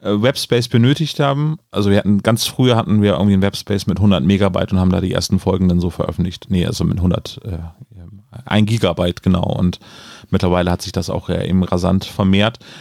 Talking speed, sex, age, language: 200 wpm, male, 40-59, German